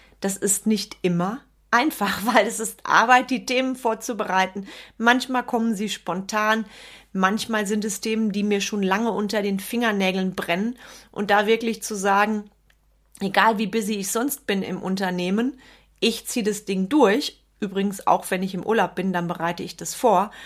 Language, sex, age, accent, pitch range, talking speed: German, female, 30-49, German, 190-225 Hz, 170 wpm